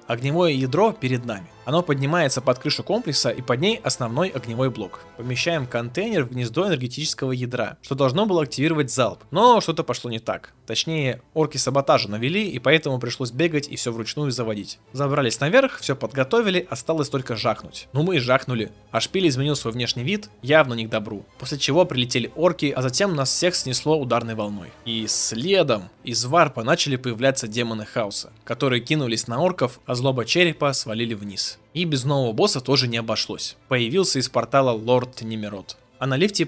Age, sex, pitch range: 20-39, male, 115-150 Hz